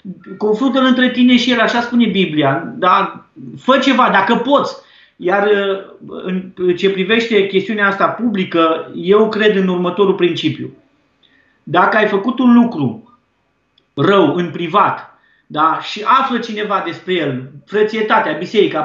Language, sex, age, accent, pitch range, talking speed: Romanian, male, 30-49, native, 185-245 Hz, 120 wpm